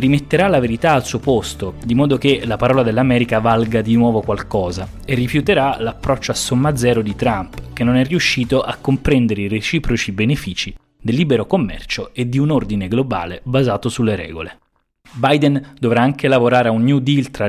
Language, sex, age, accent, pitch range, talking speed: Italian, male, 20-39, native, 105-130 Hz, 180 wpm